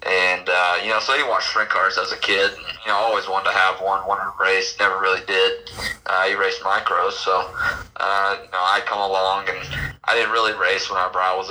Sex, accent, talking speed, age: male, American, 235 wpm, 20-39